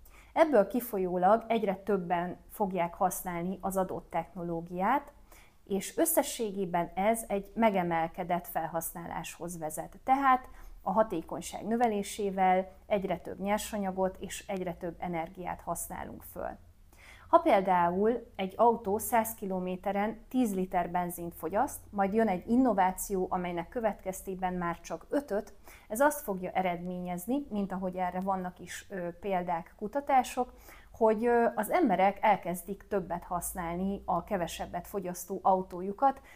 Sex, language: female, Hungarian